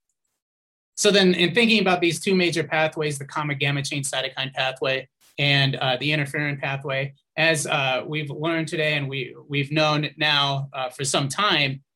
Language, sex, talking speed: English, male, 165 wpm